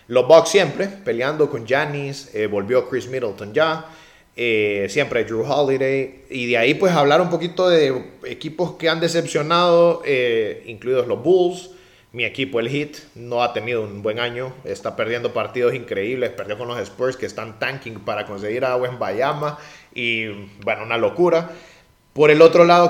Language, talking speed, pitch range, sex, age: Spanish, 170 wpm, 130-170 Hz, male, 30-49